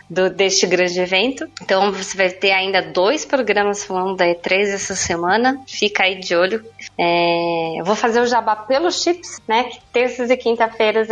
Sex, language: female, Portuguese